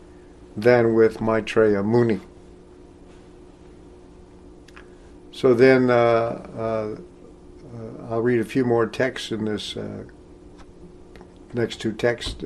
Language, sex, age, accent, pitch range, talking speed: English, male, 60-79, American, 90-135 Hz, 95 wpm